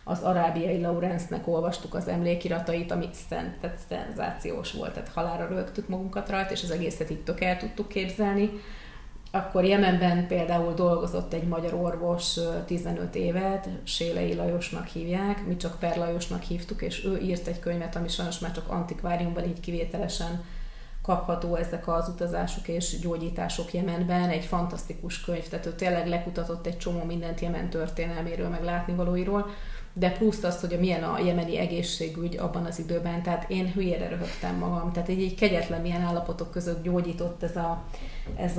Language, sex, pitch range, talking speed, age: Hungarian, female, 170-180 Hz, 155 wpm, 30-49